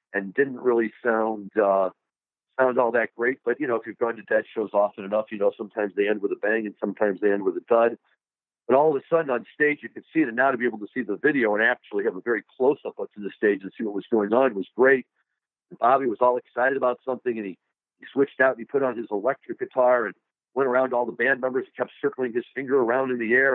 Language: English